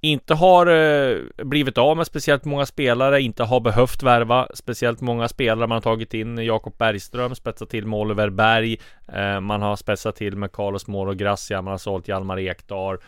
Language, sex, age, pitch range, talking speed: Swedish, male, 20-39, 95-115 Hz, 185 wpm